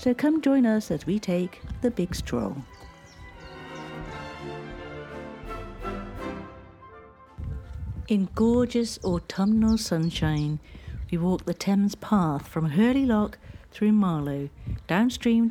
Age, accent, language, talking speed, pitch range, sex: 50-69, British, English, 95 wpm, 160-235 Hz, female